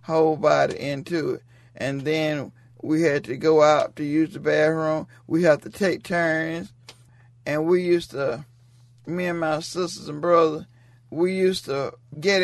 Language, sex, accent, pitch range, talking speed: English, male, American, 140-185 Hz, 165 wpm